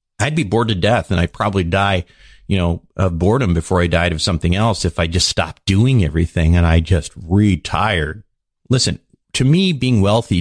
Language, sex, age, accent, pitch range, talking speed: English, male, 50-69, American, 90-115 Hz, 195 wpm